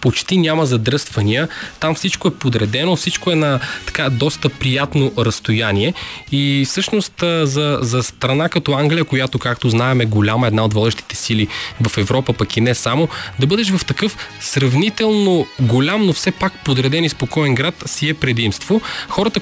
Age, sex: 20-39, male